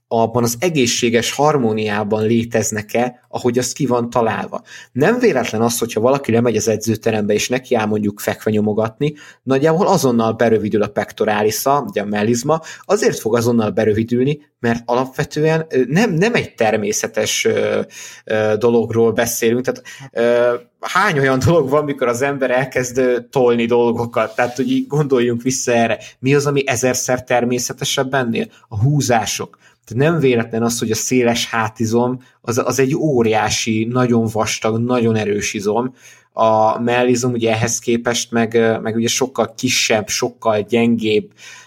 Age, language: 20-39, Hungarian